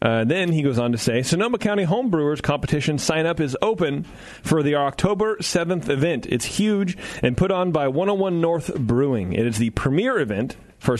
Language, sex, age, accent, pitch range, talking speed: English, male, 30-49, American, 120-170 Hz, 195 wpm